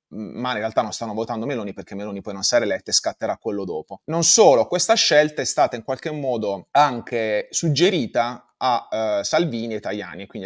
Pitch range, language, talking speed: 105-130 Hz, Italian, 190 wpm